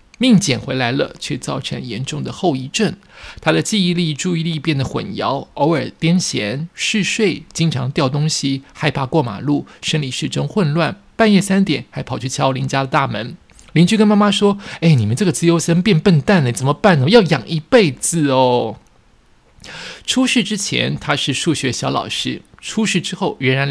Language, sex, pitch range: Chinese, male, 135-180 Hz